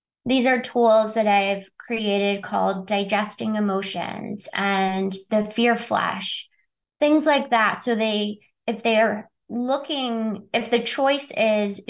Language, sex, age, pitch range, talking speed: English, female, 20-39, 200-240 Hz, 125 wpm